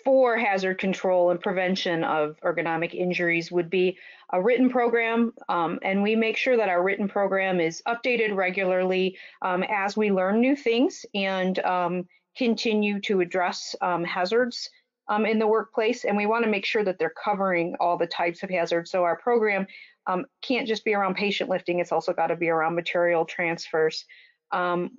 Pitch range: 175-210 Hz